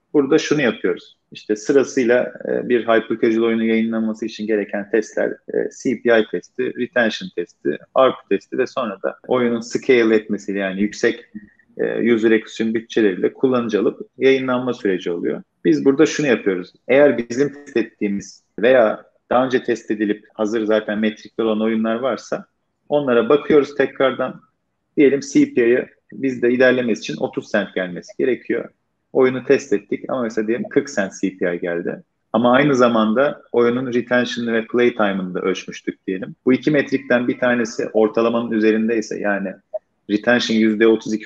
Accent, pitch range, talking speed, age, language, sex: native, 110-130 Hz, 140 wpm, 40-59, Turkish, male